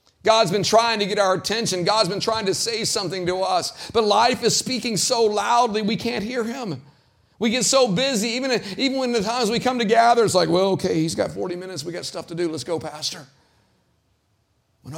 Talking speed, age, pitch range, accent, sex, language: 220 wpm, 50-69, 155-230 Hz, American, male, English